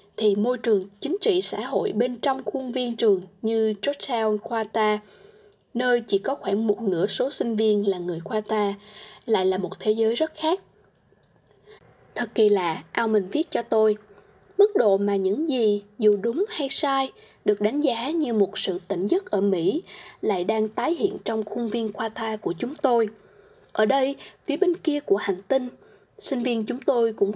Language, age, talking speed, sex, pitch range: Vietnamese, 20-39, 185 wpm, female, 205-275 Hz